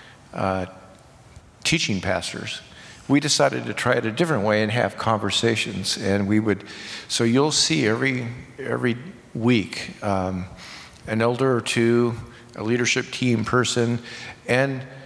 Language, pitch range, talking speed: English, 105-130 Hz, 130 wpm